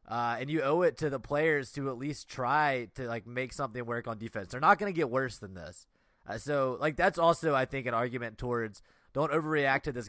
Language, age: English, 20-39